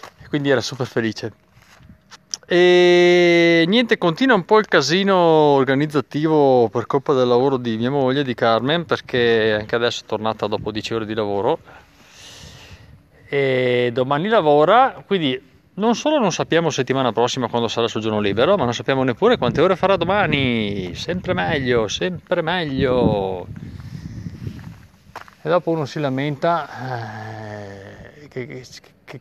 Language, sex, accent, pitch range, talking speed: Italian, male, native, 110-150 Hz, 135 wpm